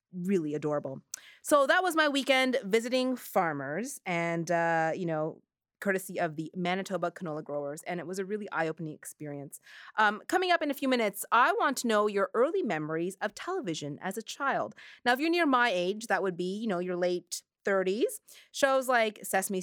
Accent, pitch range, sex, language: American, 180-245 Hz, female, English